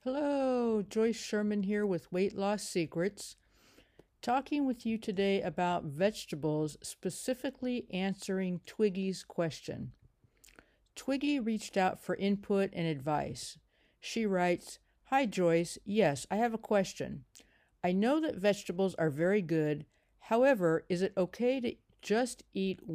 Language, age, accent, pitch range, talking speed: English, 60-79, American, 160-210 Hz, 125 wpm